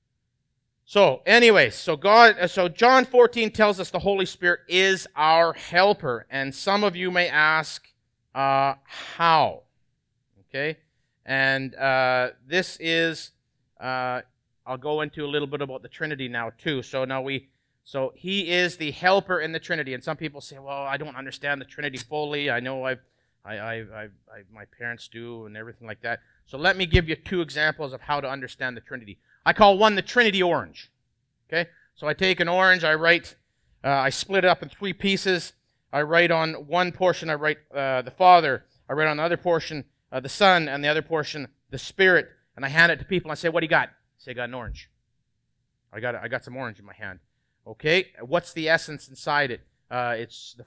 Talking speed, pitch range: 205 wpm, 125-170 Hz